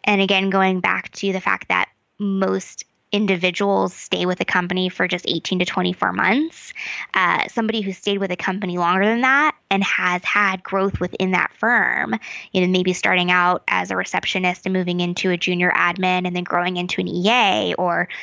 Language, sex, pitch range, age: English, female, 185-240 Hz, 20-39